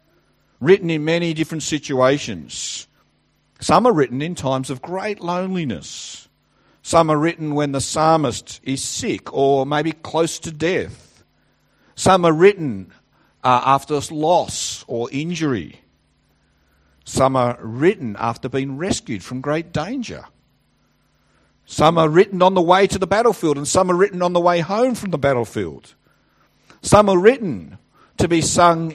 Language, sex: English, male